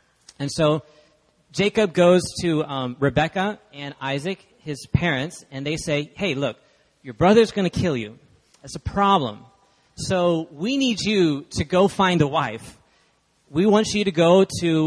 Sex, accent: male, American